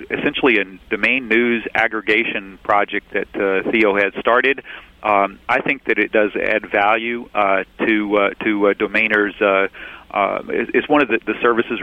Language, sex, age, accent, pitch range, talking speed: English, male, 40-59, American, 100-115 Hz, 165 wpm